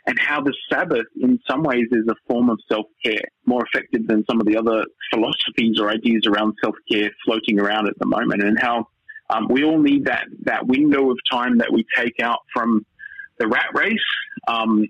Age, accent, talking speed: 20-39, Australian, 195 wpm